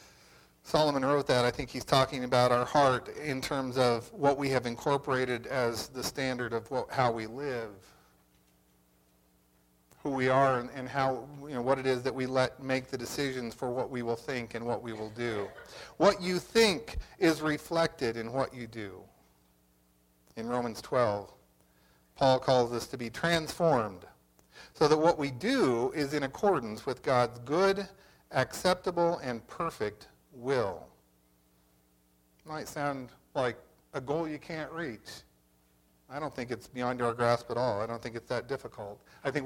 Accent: American